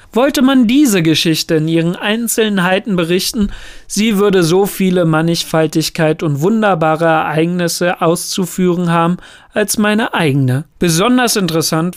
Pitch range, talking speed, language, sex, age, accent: 160-195 Hz, 115 wpm, German, male, 40-59, German